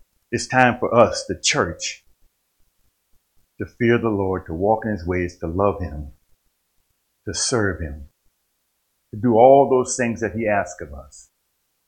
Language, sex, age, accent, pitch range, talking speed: English, male, 50-69, American, 90-120 Hz, 155 wpm